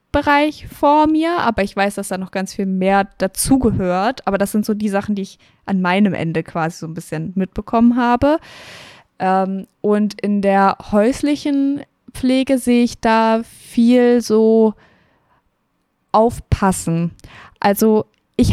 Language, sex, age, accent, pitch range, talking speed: German, female, 20-39, German, 190-240 Hz, 140 wpm